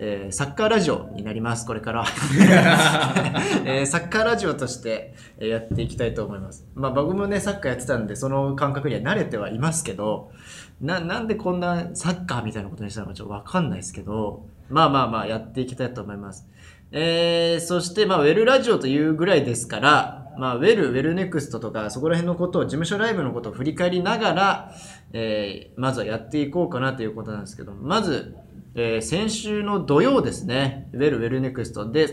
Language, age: Japanese, 20-39